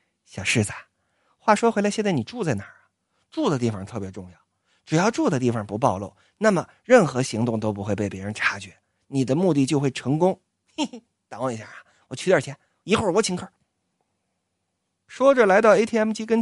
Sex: male